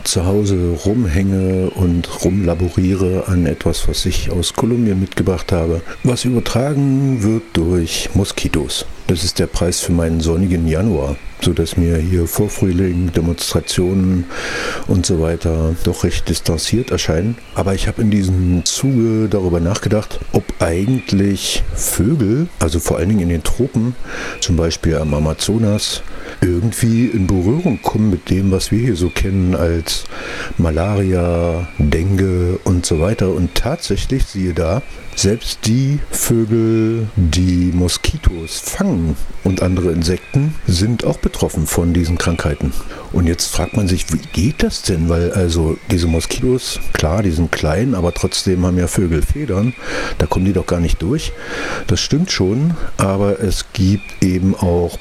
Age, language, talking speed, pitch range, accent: 60-79, German, 145 wpm, 85-110 Hz, German